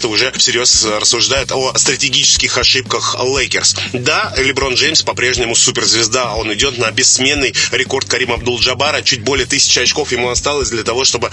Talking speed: 150 wpm